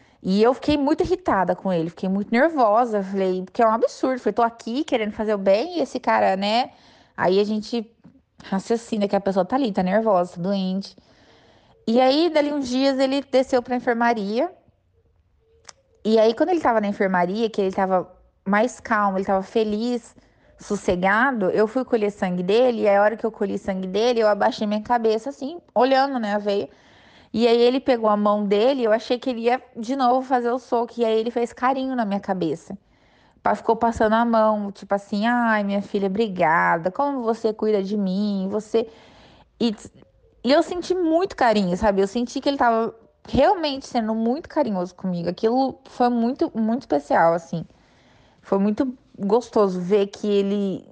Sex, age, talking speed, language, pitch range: female, 20-39, 185 wpm, Portuguese, 200-245 Hz